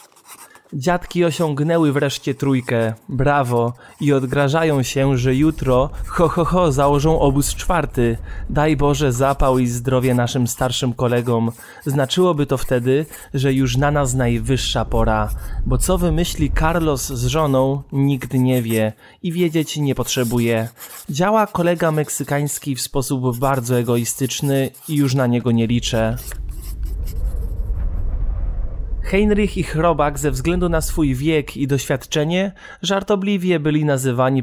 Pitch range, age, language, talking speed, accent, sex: 125-160 Hz, 20-39, Polish, 125 wpm, native, male